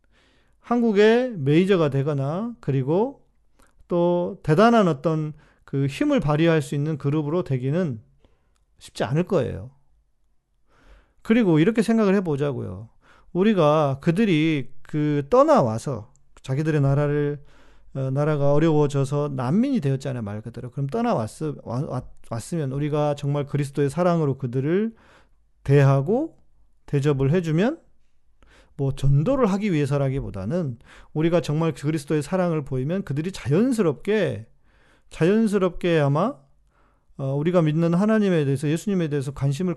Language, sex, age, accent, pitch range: Korean, male, 40-59, native, 140-195 Hz